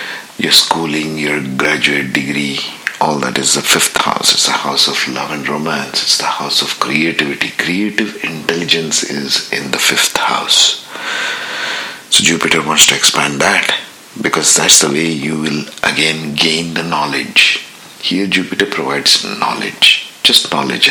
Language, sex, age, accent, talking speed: English, male, 60-79, Indian, 150 wpm